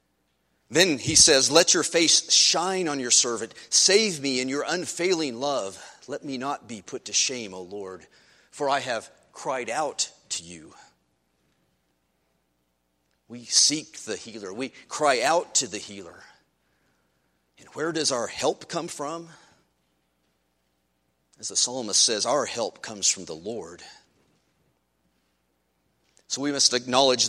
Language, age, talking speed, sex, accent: English, 40-59, 140 wpm, male, American